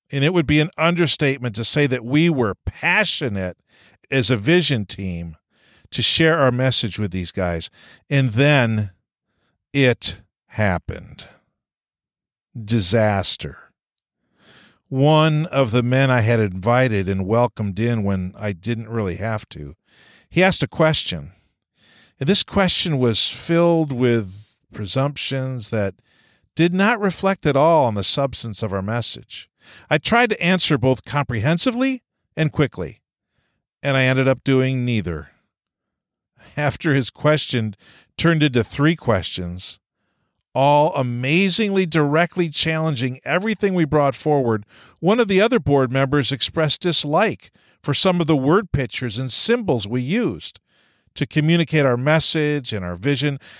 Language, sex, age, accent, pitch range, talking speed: English, male, 50-69, American, 115-160 Hz, 135 wpm